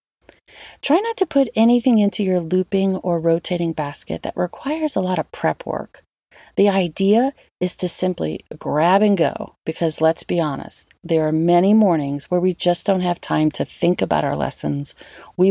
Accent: American